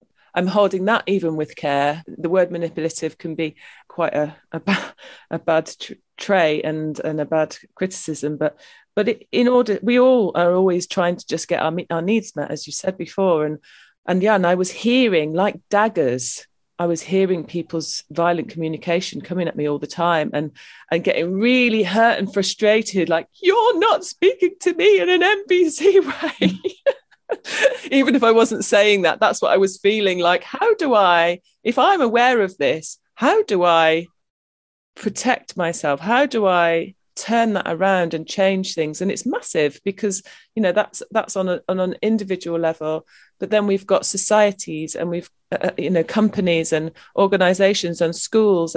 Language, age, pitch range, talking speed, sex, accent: English, 30-49, 165-215 Hz, 180 wpm, female, British